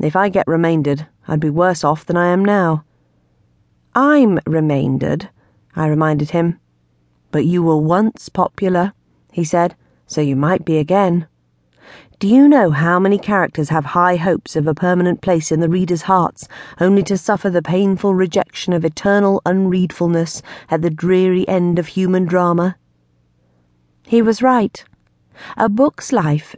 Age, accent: 40-59, British